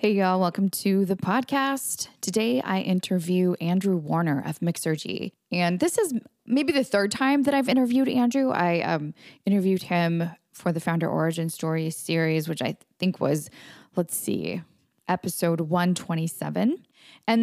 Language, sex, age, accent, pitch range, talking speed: English, female, 20-39, American, 175-230 Hz, 150 wpm